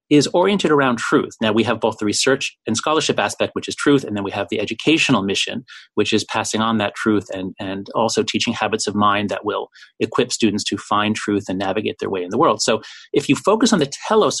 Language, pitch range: English, 115-180 Hz